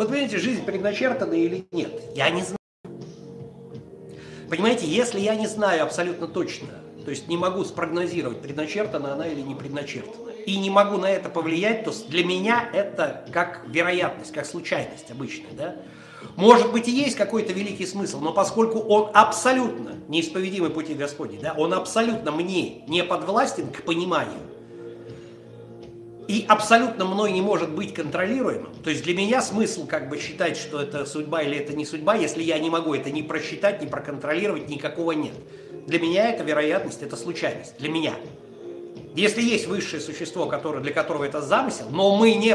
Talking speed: 165 wpm